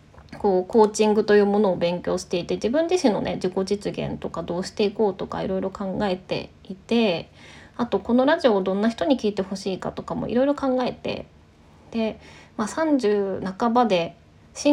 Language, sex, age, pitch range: Japanese, female, 20-39, 185-245 Hz